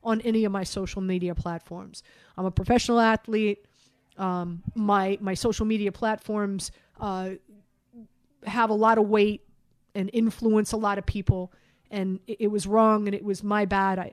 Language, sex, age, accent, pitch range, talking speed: English, female, 30-49, American, 190-245 Hz, 170 wpm